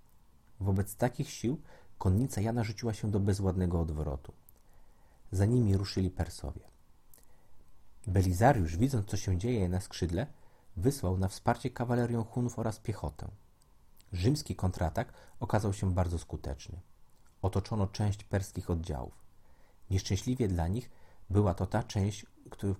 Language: Polish